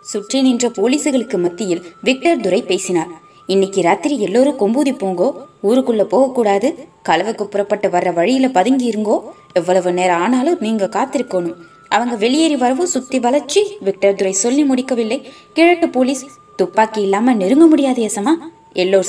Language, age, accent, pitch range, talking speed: Tamil, 20-39, native, 185-260 Hz, 135 wpm